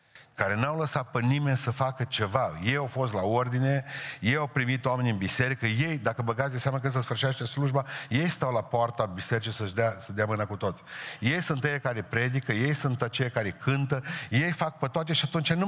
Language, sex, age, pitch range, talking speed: Romanian, male, 50-69, 125-155 Hz, 220 wpm